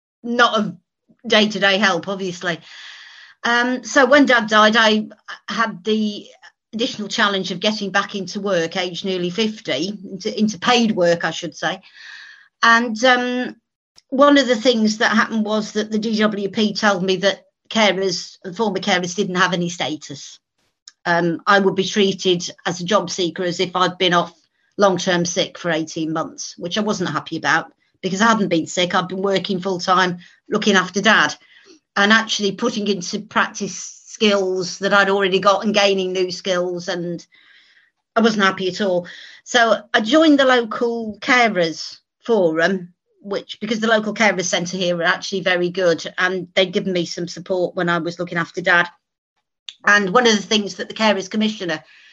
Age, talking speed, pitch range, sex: 40-59, 170 wpm, 180-215 Hz, female